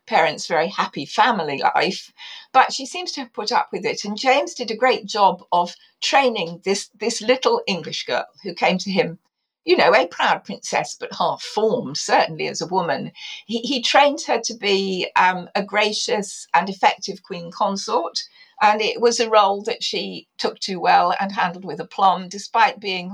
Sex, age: female, 50-69